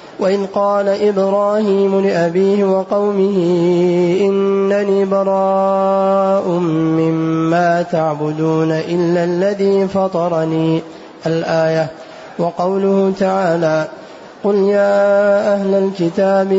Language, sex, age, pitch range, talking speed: Arabic, male, 30-49, 170-195 Hz, 70 wpm